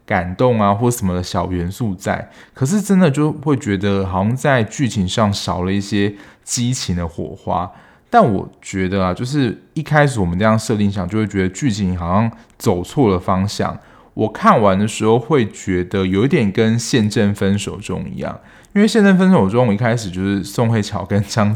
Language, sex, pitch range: Chinese, male, 95-130 Hz